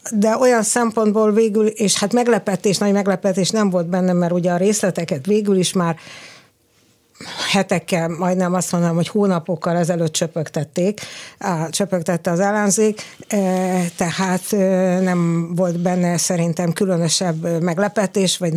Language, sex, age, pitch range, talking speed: Hungarian, female, 60-79, 175-205 Hz, 125 wpm